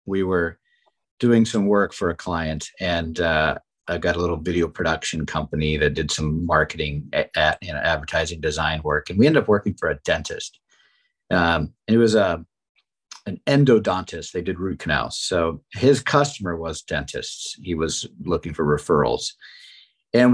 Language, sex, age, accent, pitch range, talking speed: English, male, 50-69, American, 85-115 Hz, 170 wpm